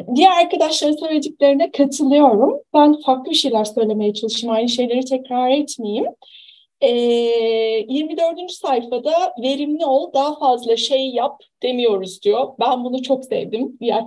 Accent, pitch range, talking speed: native, 250-330 Hz, 125 wpm